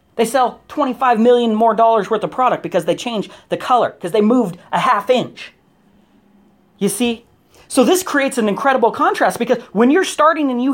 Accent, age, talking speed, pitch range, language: American, 40-59, 190 wpm, 210-270 Hz, English